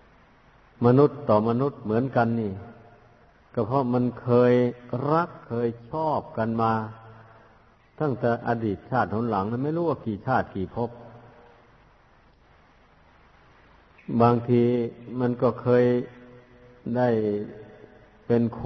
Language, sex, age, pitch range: Thai, male, 60-79, 115-125 Hz